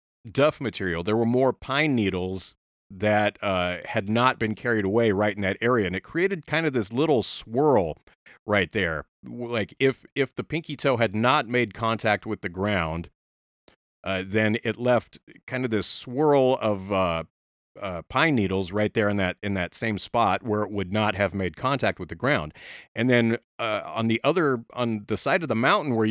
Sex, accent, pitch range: male, American, 95-125 Hz